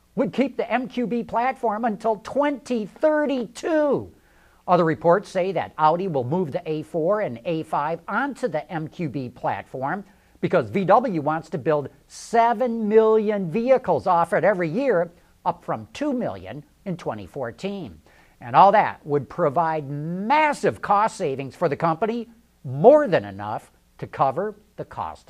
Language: English